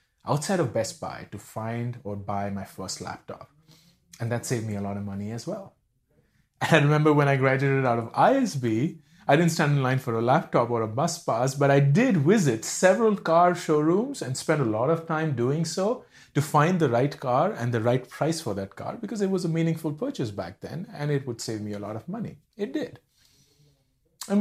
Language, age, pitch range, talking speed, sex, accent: English, 30-49, 110-165 Hz, 220 wpm, male, Indian